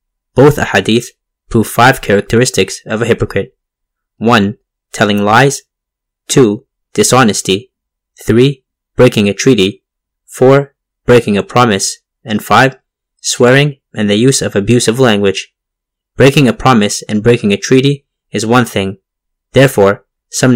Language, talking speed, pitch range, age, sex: English, 125 wpm, 100-130 Hz, 20-39, male